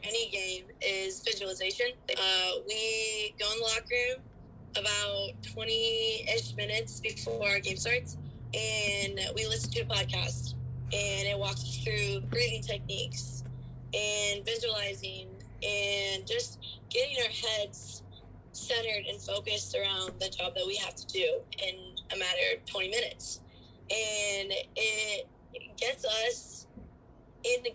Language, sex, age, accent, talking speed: English, female, 10-29, American, 135 wpm